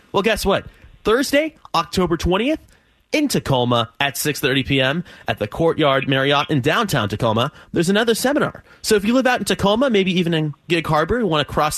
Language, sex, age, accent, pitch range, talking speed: English, male, 30-49, American, 135-195 Hz, 190 wpm